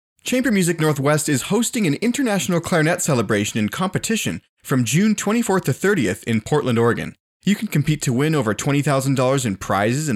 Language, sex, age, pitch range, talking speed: English, male, 30-49, 125-175 Hz, 170 wpm